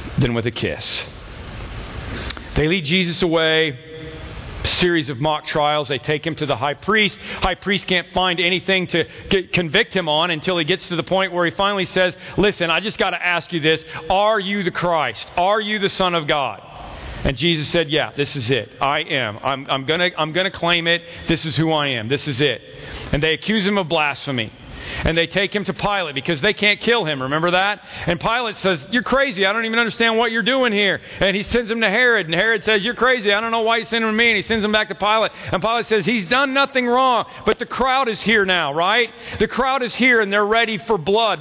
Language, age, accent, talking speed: English, 40-59, American, 240 wpm